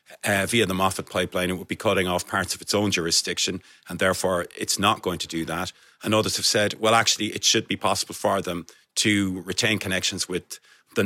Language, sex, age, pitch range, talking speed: English, male, 30-49, 95-110 Hz, 215 wpm